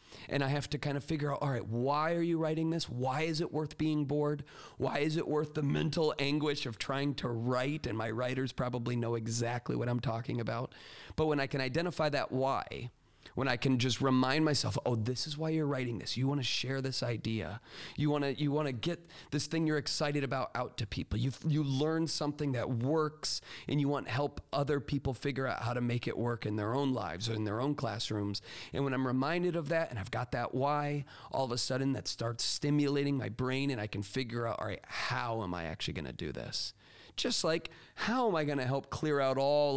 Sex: male